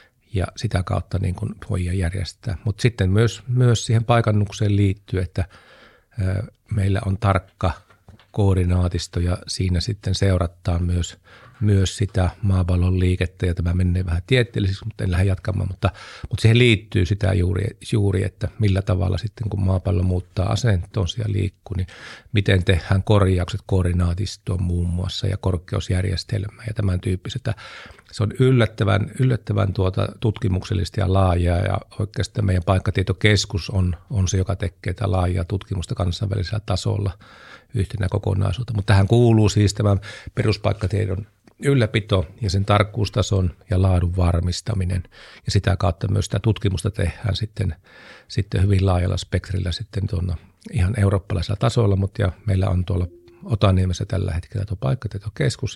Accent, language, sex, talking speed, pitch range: native, Finnish, male, 135 wpm, 95-105 Hz